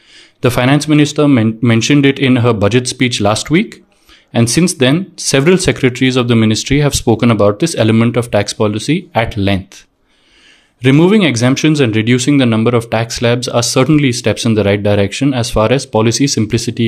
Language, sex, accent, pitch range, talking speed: English, male, Indian, 110-140 Hz, 180 wpm